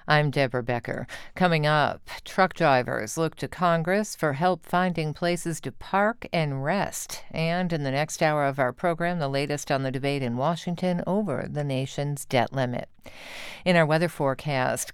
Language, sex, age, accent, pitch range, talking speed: English, female, 50-69, American, 140-175 Hz, 170 wpm